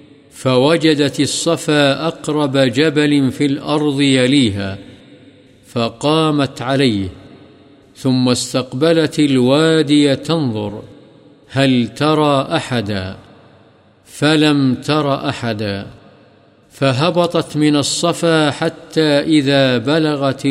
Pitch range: 130-155 Hz